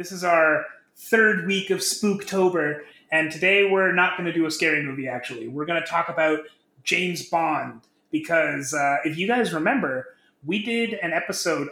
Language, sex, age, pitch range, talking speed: English, male, 30-49, 160-210 Hz, 180 wpm